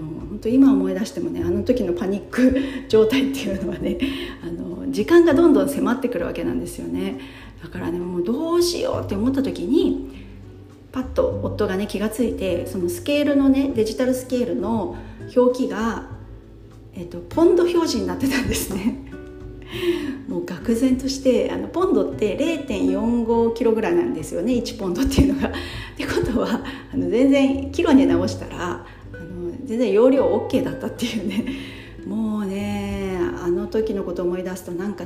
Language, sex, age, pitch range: Japanese, female, 40-59, 180-260 Hz